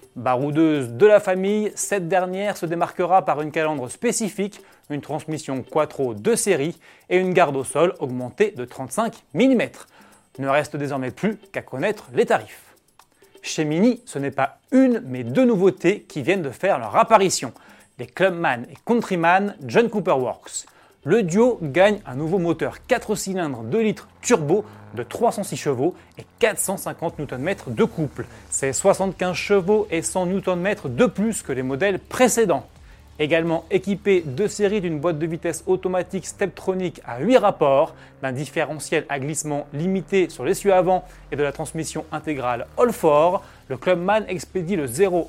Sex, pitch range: male, 145-200 Hz